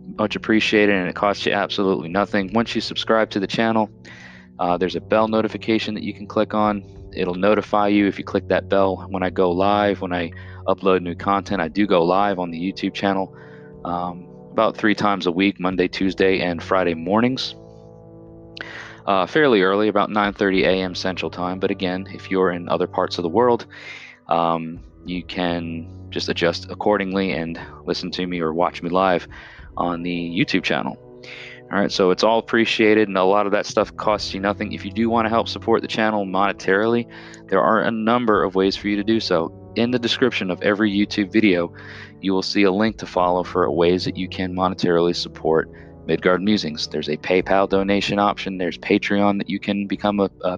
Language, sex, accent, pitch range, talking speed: English, male, American, 90-105 Hz, 200 wpm